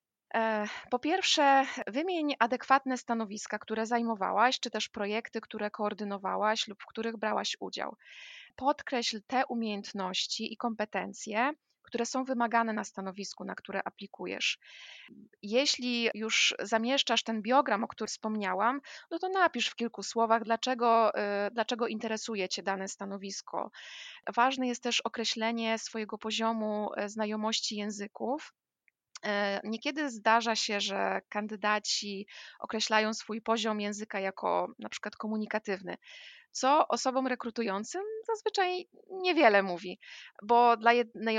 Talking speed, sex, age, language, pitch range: 115 wpm, female, 20-39, Polish, 210-245 Hz